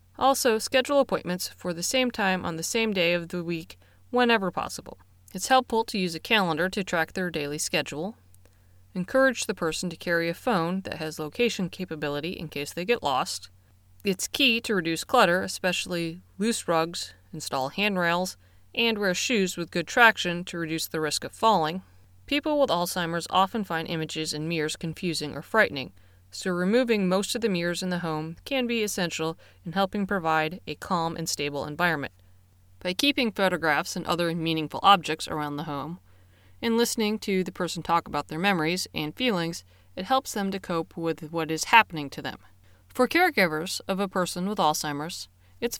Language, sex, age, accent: English, female, 20-39, American